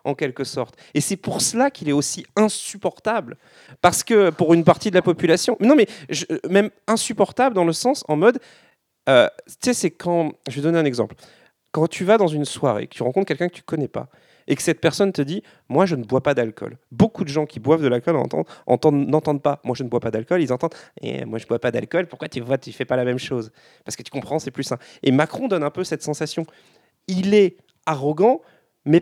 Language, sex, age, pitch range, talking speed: French, male, 30-49, 140-190 Hz, 240 wpm